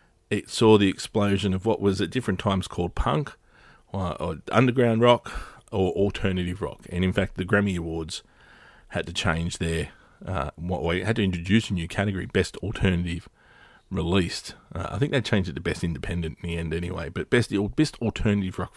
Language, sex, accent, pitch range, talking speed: English, male, Australian, 90-110 Hz, 190 wpm